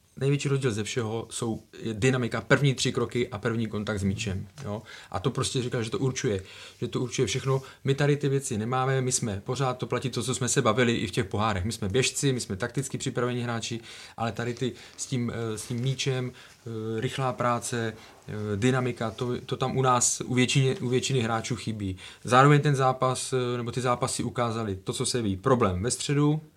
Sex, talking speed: male, 200 wpm